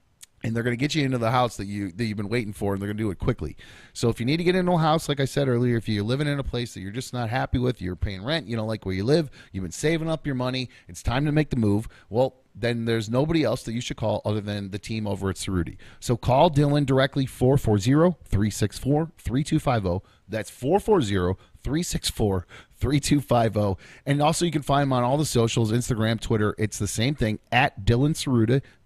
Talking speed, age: 230 wpm, 30-49